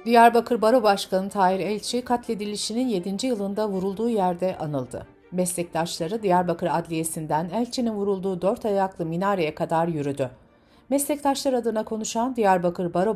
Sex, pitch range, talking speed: female, 180-235 Hz, 120 wpm